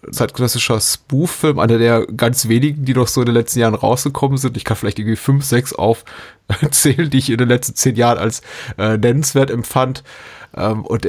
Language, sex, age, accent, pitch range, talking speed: German, male, 30-49, German, 110-130 Hz, 190 wpm